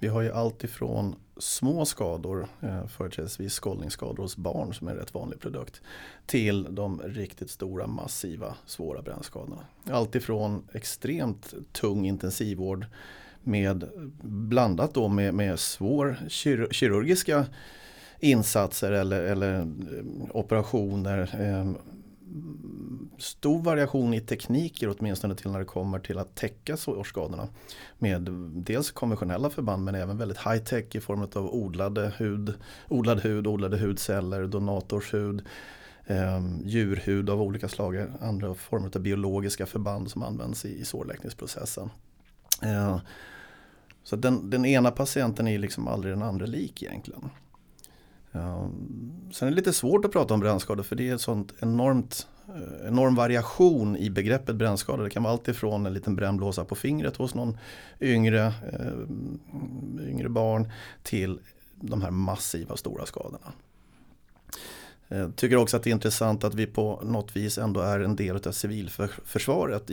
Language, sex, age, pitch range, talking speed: English, male, 30-49, 95-120 Hz, 135 wpm